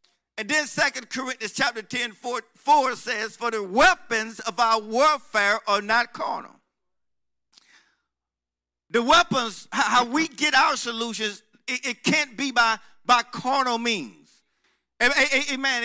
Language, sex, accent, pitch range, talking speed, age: English, male, American, 205-260 Hz, 130 wpm, 50-69